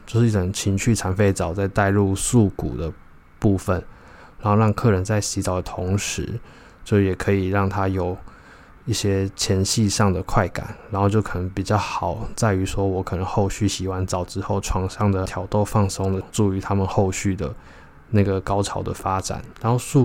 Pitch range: 95-105 Hz